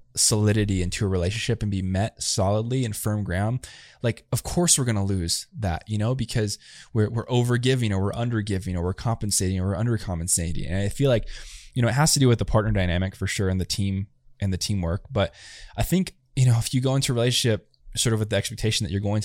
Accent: American